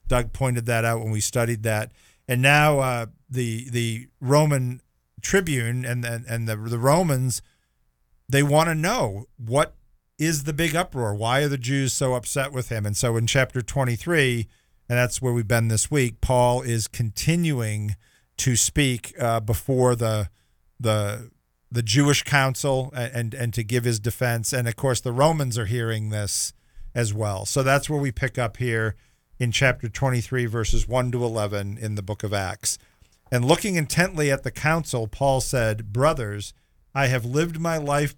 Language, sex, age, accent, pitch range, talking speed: English, male, 50-69, American, 115-140 Hz, 180 wpm